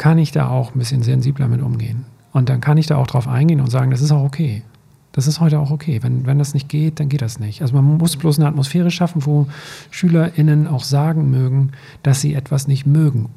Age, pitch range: 40-59, 130-150 Hz